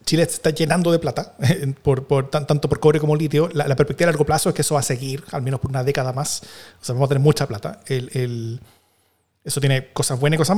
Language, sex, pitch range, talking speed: Spanish, male, 130-150 Hz, 260 wpm